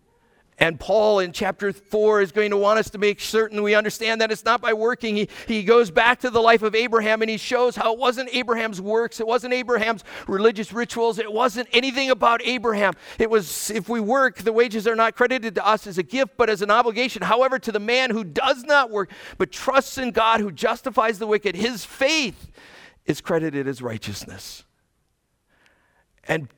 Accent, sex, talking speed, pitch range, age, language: American, male, 200 wpm, 185-235 Hz, 50-69, English